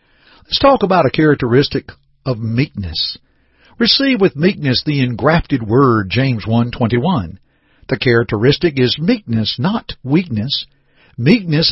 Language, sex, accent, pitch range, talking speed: English, male, American, 120-185 Hz, 115 wpm